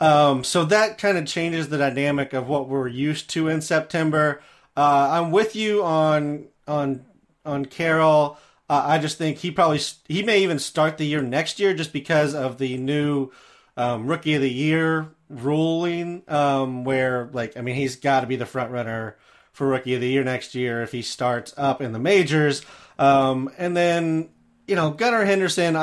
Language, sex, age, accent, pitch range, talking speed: English, male, 30-49, American, 130-160 Hz, 185 wpm